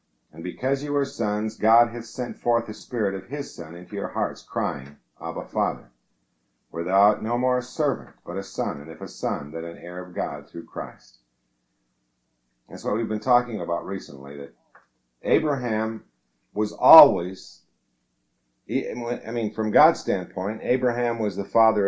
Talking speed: 165 wpm